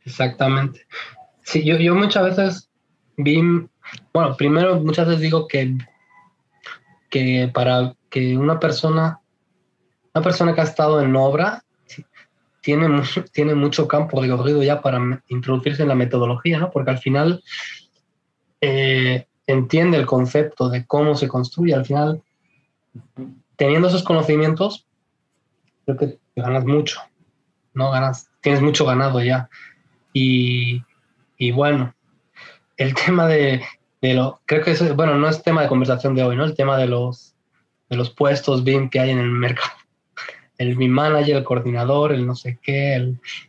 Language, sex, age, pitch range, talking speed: English, male, 20-39, 130-155 Hz, 150 wpm